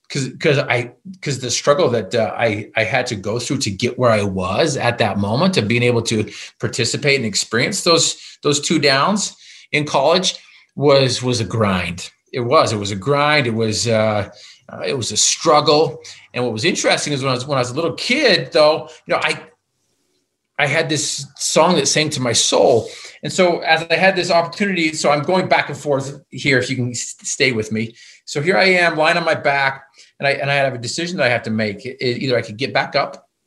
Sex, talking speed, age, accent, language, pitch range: male, 230 wpm, 30-49, American, English, 110-150 Hz